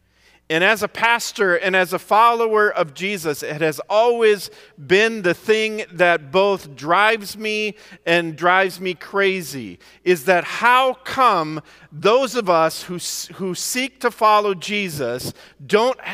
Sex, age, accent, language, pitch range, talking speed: male, 40-59, American, English, 145-220 Hz, 140 wpm